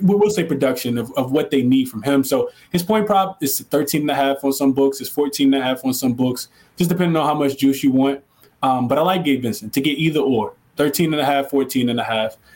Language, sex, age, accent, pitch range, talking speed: English, male, 20-39, American, 135-155 Hz, 270 wpm